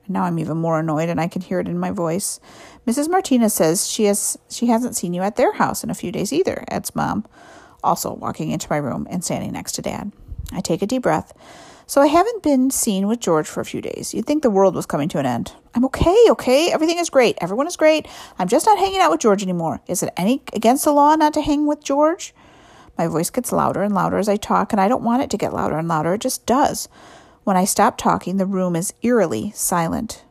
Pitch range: 180-260 Hz